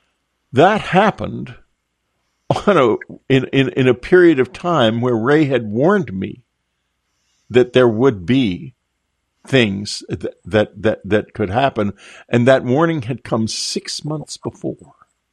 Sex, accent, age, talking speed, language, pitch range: male, American, 50-69, 135 wpm, English, 105-150 Hz